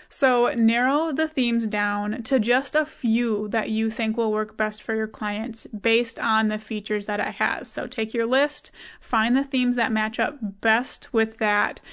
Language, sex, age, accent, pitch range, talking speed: English, female, 20-39, American, 220-260 Hz, 190 wpm